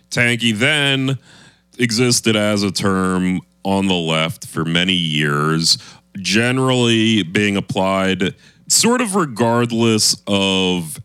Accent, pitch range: American, 85-115 Hz